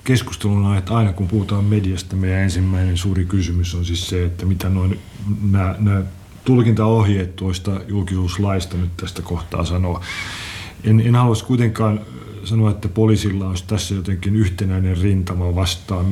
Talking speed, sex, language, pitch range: 140 wpm, male, Finnish, 95-105 Hz